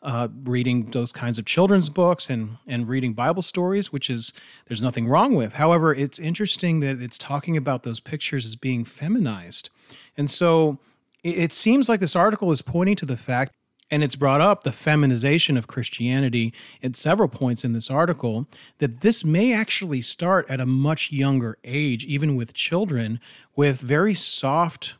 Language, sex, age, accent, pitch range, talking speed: English, male, 40-59, American, 125-160 Hz, 175 wpm